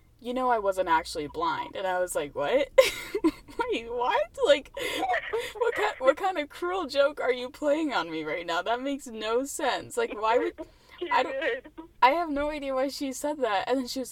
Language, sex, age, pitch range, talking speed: English, female, 10-29, 200-325 Hz, 210 wpm